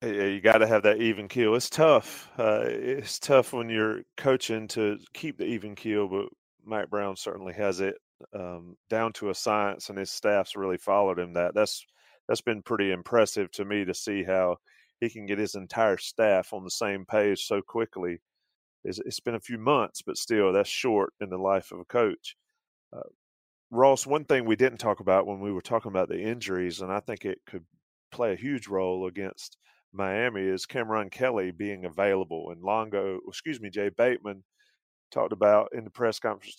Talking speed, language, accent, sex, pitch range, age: 195 wpm, English, American, male, 95-115 Hz, 30-49